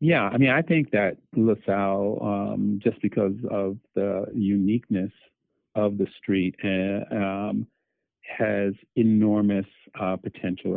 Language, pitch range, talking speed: English, 95-105 Hz, 125 wpm